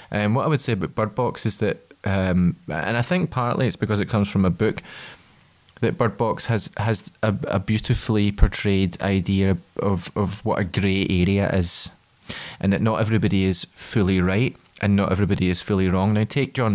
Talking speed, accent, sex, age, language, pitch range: 195 wpm, British, male, 20-39, English, 100-120 Hz